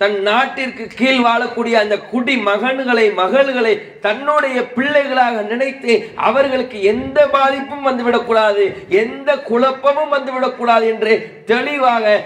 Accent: Indian